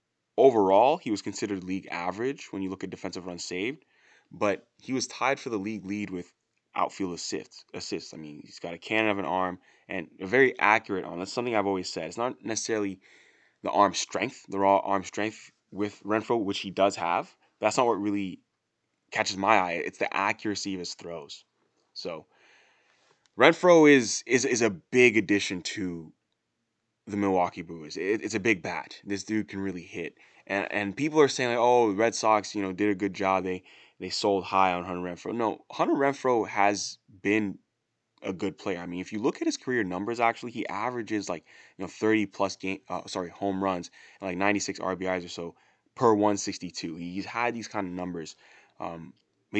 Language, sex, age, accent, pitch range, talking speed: English, male, 20-39, American, 95-110 Hz, 195 wpm